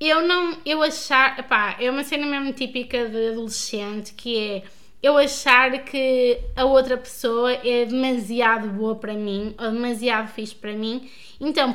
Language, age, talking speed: Portuguese, 20-39, 160 wpm